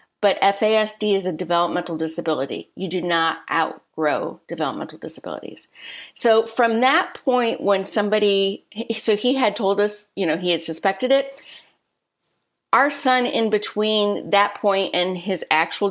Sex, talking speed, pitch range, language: female, 145 wpm, 175-210 Hz, English